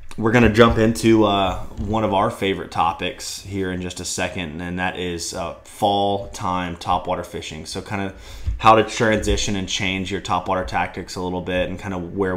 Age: 20-39